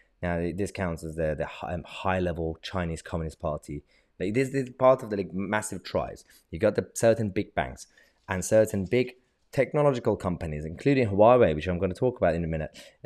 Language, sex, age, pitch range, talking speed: English, male, 20-39, 85-120 Hz, 190 wpm